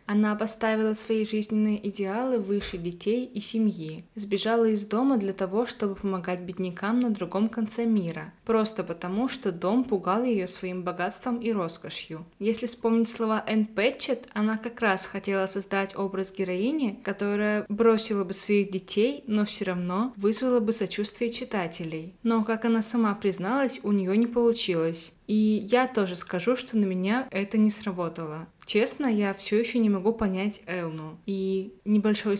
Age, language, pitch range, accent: 20-39, Russian, 185-225 Hz, native